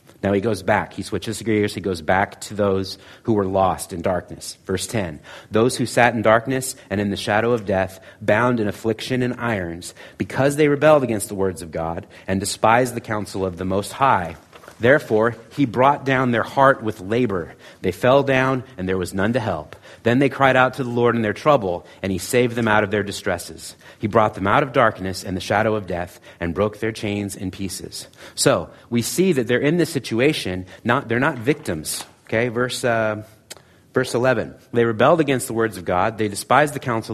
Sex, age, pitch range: male, 30-49, 100-130 Hz